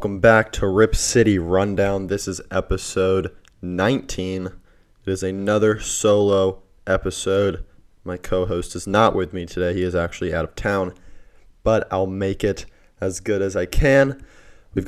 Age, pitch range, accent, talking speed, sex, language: 20-39, 90-105 Hz, American, 155 wpm, male, English